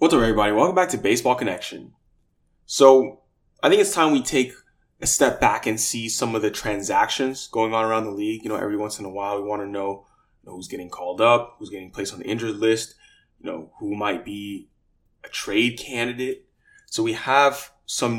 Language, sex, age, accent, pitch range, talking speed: English, male, 20-39, American, 105-130 Hz, 210 wpm